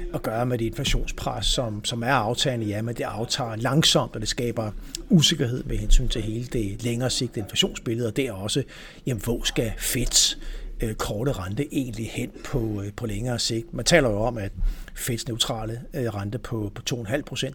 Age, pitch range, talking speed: 60-79, 110-130 Hz, 180 wpm